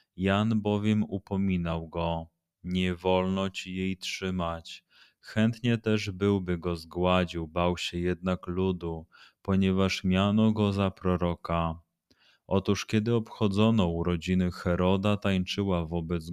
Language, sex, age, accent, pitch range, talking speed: Polish, male, 30-49, native, 85-100 Hz, 110 wpm